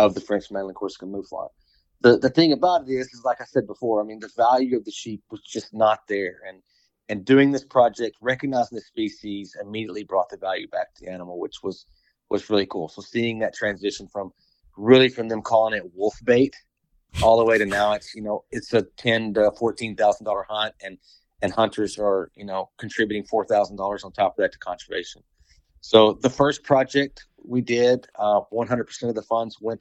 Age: 30-49